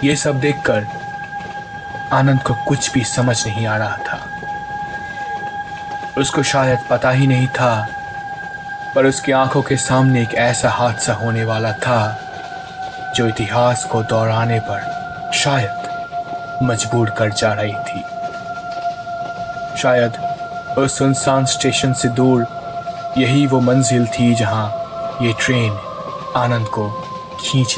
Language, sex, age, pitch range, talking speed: Hindi, male, 20-39, 125-170 Hz, 120 wpm